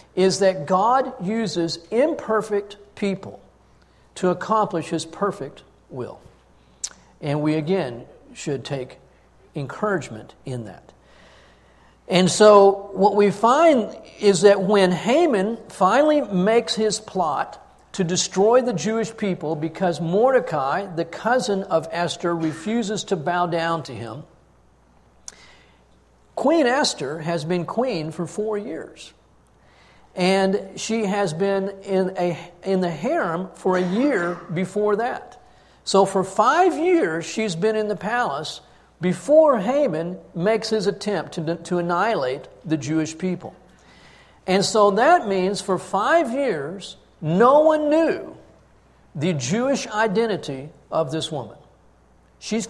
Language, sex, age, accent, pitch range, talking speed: English, male, 50-69, American, 160-215 Hz, 125 wpm